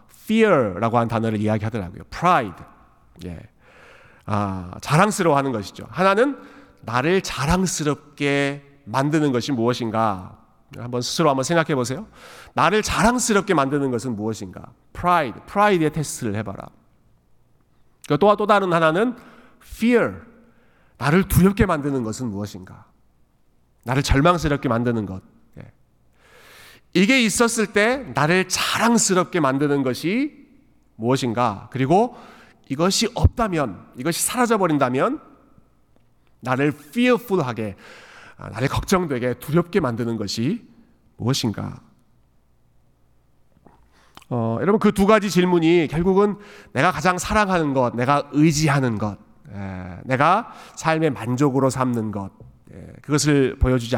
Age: 40-59